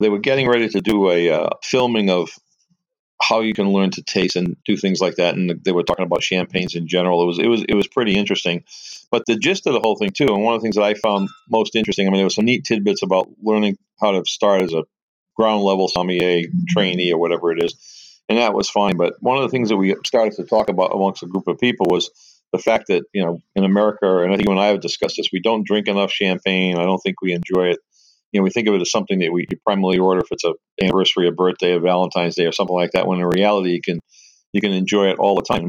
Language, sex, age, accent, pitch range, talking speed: English, male, 40-59, American, 90-100 Hz, 275 wpm